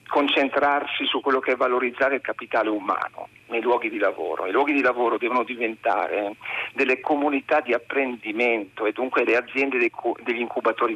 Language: Italian